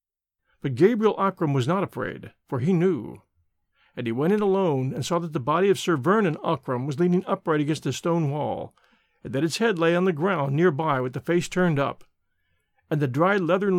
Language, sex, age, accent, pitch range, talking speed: English, male, 50-69, American, 135-190 Hz, 210 wpm